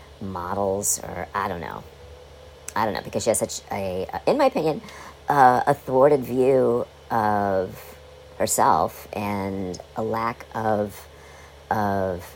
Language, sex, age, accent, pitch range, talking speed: English, male, 40-59, American, 70-105 Hz, 135 wpm